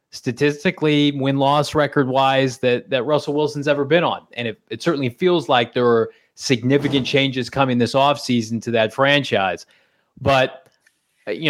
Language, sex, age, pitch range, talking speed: English, male, 30-49, 125-150 Hz, 145 wpm